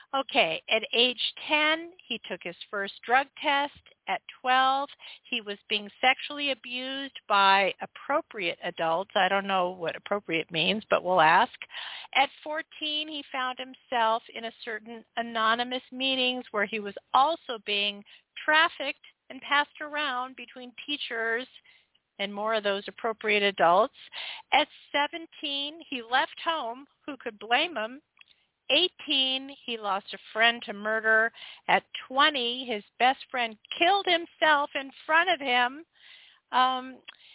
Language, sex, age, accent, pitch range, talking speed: English, female, 50-69, American, 220-290 Hz, 135 wpm